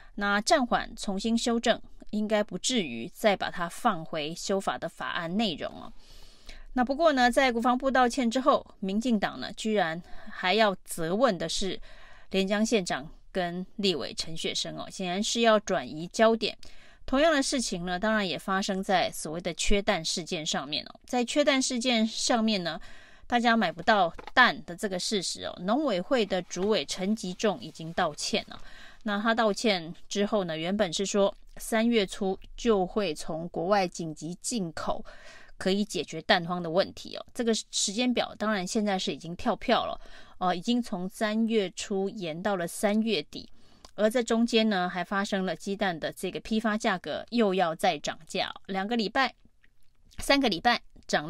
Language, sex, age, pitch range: Chinese, female, 20-39, 185-230 Hz